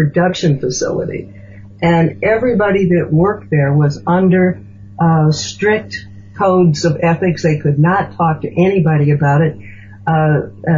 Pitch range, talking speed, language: 145-175 Hz, 130 wpm, English